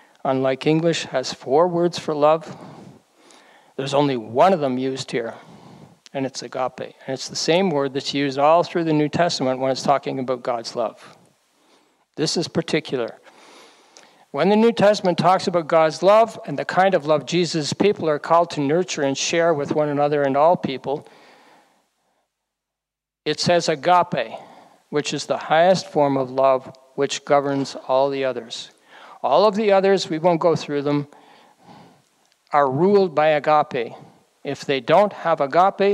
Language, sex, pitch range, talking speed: English, male, 140-175 Hz, 165 wpm